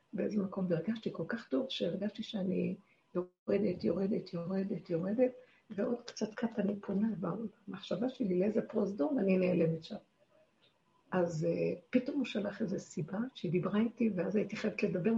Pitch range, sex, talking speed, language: 185-235 Hz, female, 150 wpm, Hebrew